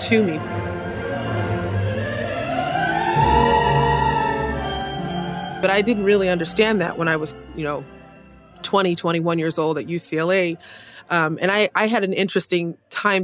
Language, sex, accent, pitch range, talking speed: English, female, American, 170-205 Hz, 120 wpm